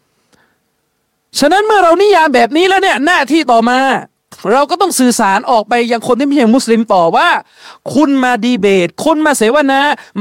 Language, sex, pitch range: Thai, male, 210-285 Hz